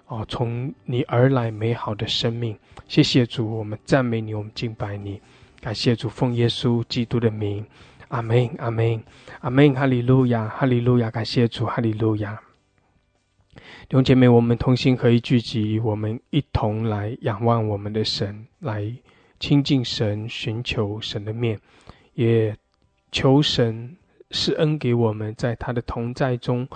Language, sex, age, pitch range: English, male, 20-39, 110-125 Hz